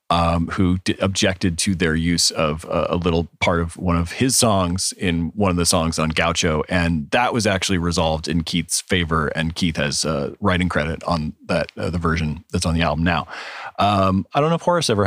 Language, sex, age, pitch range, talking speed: English, male, 30-49, 85-105 Hz, 215 wpm